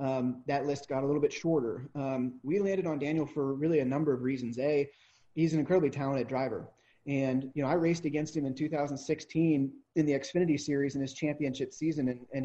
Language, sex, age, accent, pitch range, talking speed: English, male, 30-49, American, 135-160 Hz, 210 wpm